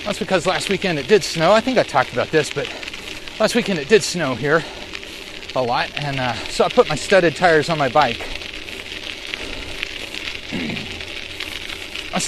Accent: American